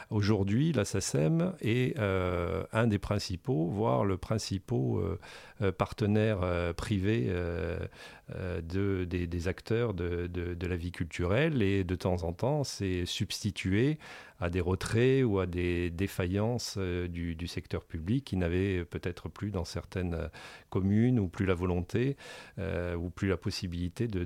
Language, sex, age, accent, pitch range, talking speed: French, male, 40-59, French, 90-110 Hz, 155 wpm